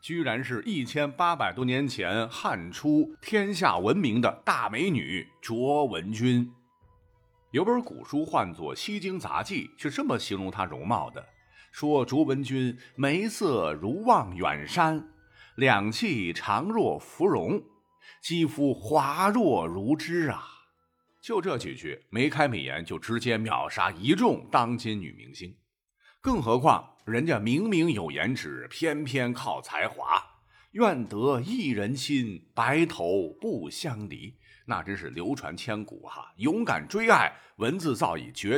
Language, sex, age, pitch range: Chinese, male, 50-69, 105-155 Hz